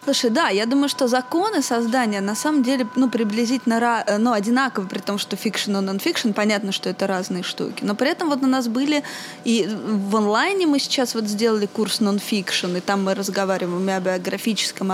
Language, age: Russian, 20-39